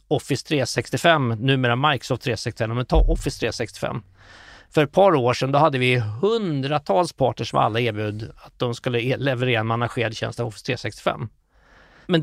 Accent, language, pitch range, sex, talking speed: native, Swedish, 120-155 Hz, male, 160 wpm